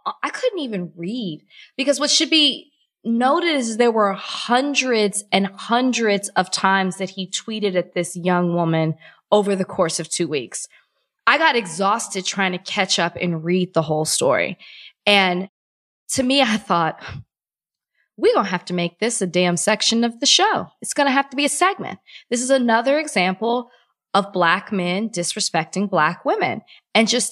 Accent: American